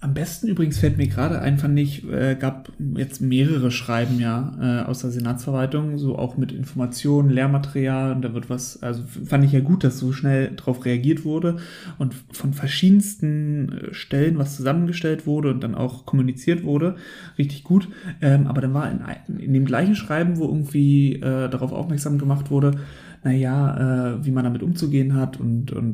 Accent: German